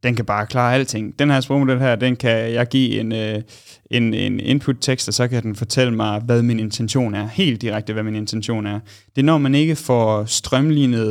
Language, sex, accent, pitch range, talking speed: Danish, male, native, 105-125 Hz, 215 wpm